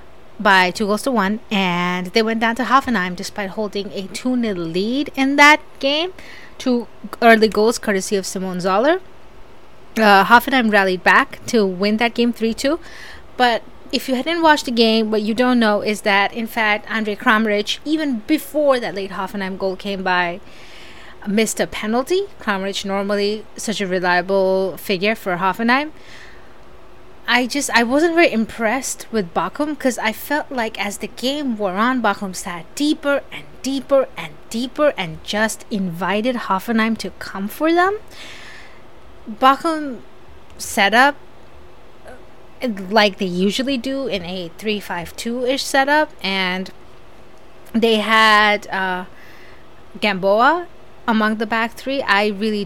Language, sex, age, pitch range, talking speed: English, female, 20-39, 195-255 Hz, 145 wpm